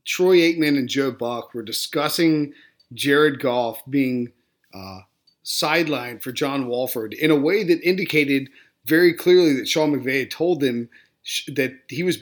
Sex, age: male, 30-49